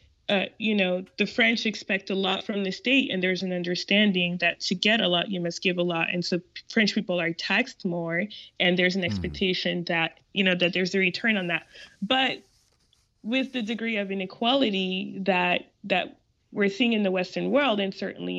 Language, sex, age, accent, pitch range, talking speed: English, female, 20-39, American, 175-205 Hz, 200 wpm